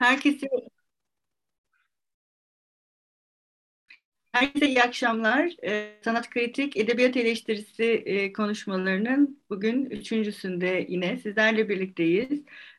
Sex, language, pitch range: female, Turkish, 180-220 Hz